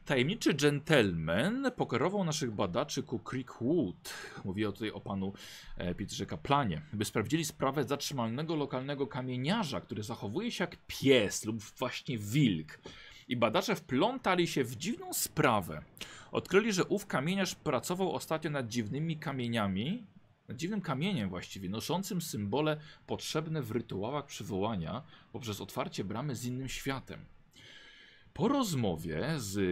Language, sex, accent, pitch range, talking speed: Polish, male, native, 105-155 Hz, 125 wpm